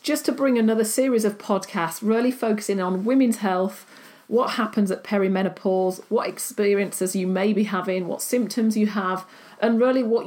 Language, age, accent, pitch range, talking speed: English, 40-59, British, 185-230 Hz, 170 wpm